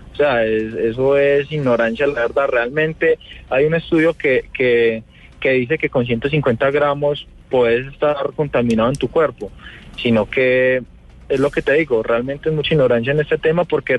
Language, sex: Spanish, male